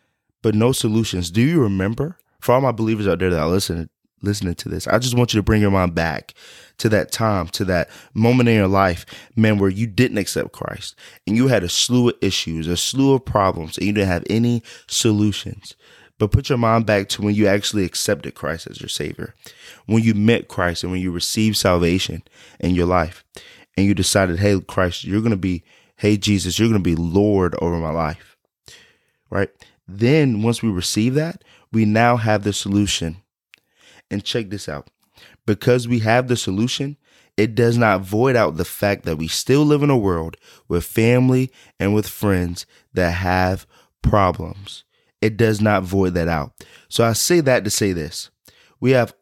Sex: male